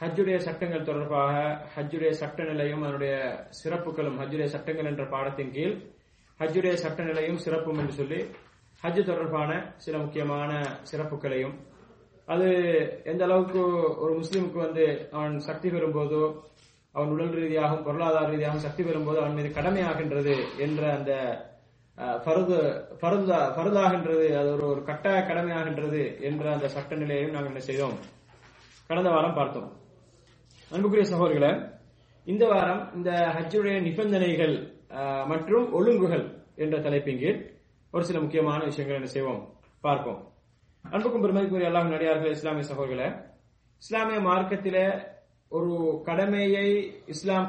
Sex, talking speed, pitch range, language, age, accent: male, 120 wpm, 145-180 Hz, English, 20-39, Indian